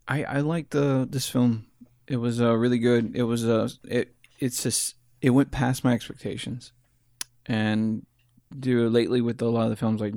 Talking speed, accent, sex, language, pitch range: 190 wpm, American, male, English, 110-120 Hz